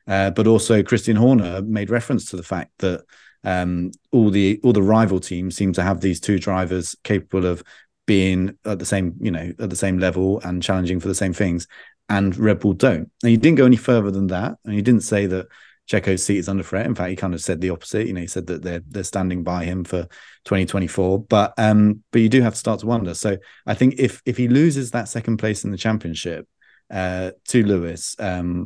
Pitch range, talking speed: 90-110 Hz, 230 wpm